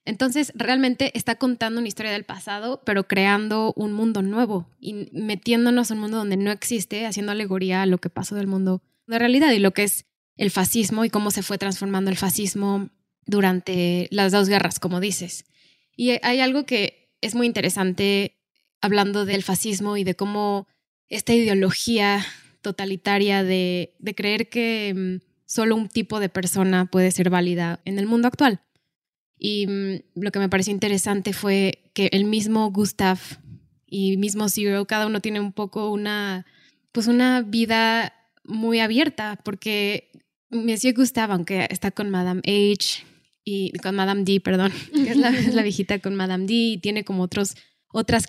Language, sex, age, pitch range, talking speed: Spanish, female, 20-39, 190-225 Hz, 165 wpm